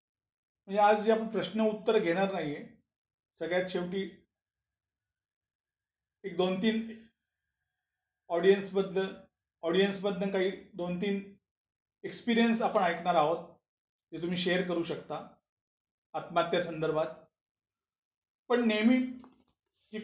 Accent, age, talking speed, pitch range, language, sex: native, 40-59, 75 wpm, 170-225 Hz, Marathi, male